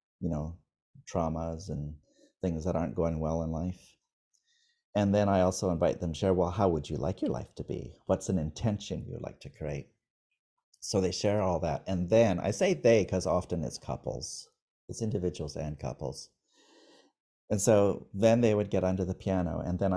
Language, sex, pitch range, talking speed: English, male, 80-95 Hz, 190 wpm